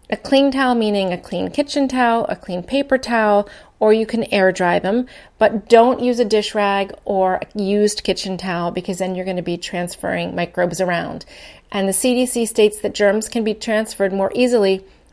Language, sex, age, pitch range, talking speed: English, female, 30-49, 185-225 Hz, 195 wpm